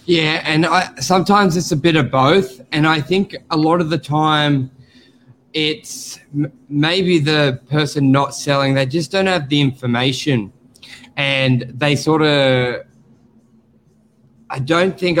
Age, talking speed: 20-39, 145 wpm